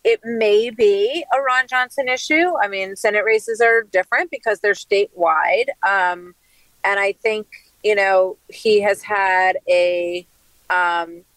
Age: 40-59